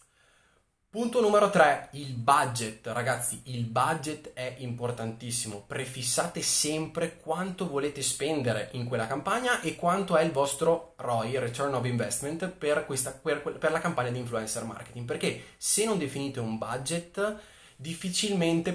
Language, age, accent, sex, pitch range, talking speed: Italian, 20-39, native, male, 115-155 Hz, 140 wpm